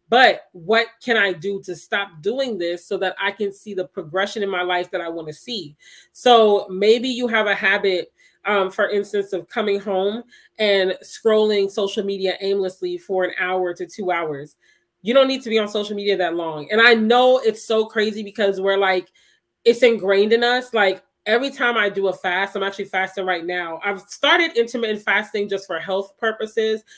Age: 20-39